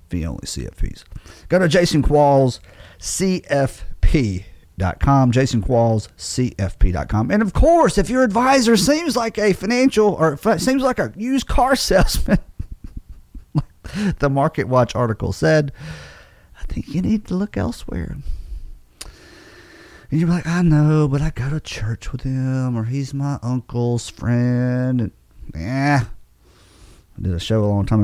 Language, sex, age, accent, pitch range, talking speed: English, male, 30-49, American, 105-165 Hz, 140 wpm